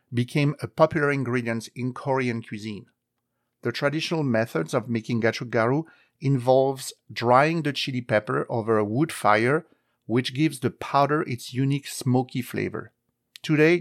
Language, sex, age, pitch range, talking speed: English, male, 50-69, 115-145 Hz, 135 wpm